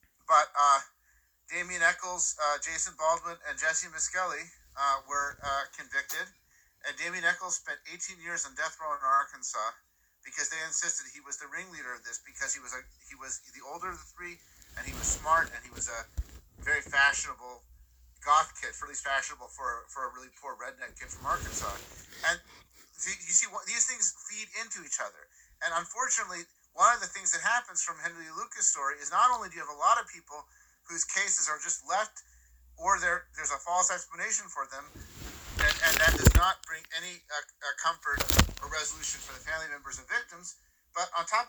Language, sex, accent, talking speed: English, male, American, 190 wpm